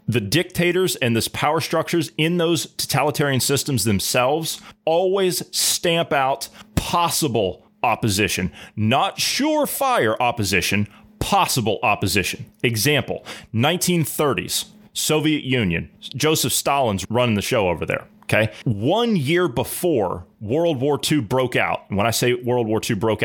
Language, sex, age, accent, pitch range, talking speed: English, male, 30-49, American, 105-155 Hz, 125 wpm